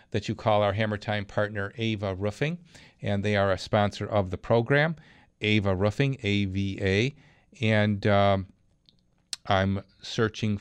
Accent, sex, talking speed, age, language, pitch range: American, male, 145 wpm, 40-59, English, 95-110 Hz